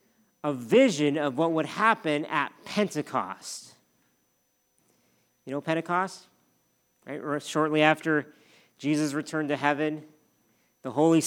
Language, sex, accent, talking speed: English, male, American, 110 wpm